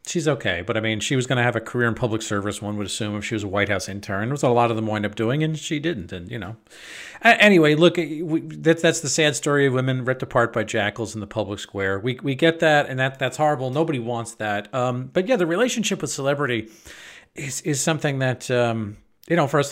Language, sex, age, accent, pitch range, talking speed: English, male, 40-59, American, 110-150 Hz, 260 wpm